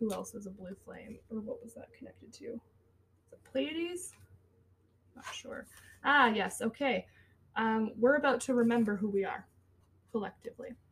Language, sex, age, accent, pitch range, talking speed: English, female, 20-39, American, 185-260 Hz, 155 wpm